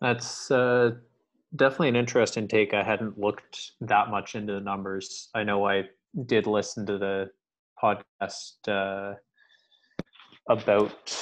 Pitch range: 95-105 Hz